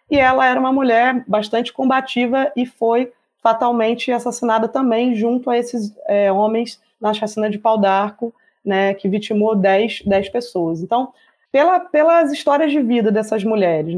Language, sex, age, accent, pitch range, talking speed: Portuguese, female, 20-39, Brazilian, 215-255 Hz, 135 wpm